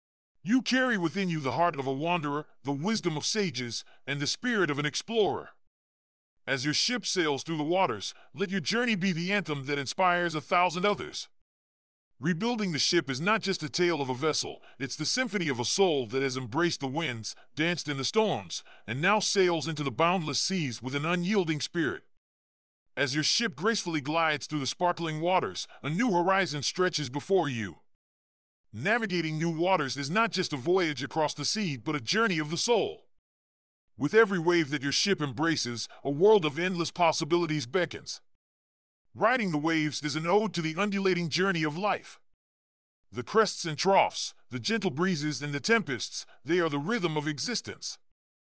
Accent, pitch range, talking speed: American, 135-185 Hz, 180 wpm